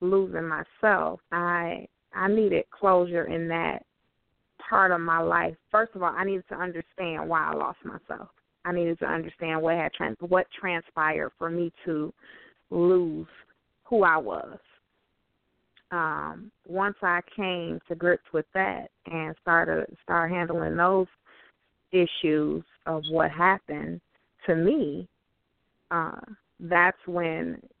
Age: 30-49